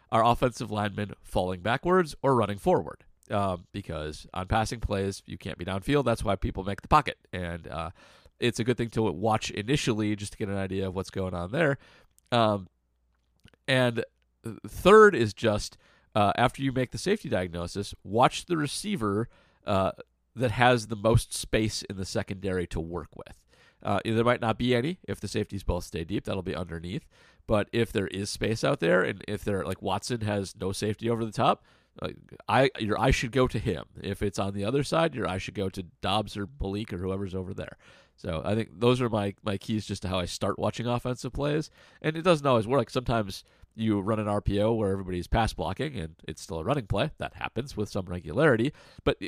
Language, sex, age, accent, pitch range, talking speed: English, male, 40-59, American, 95-120 Hz, 210 wpm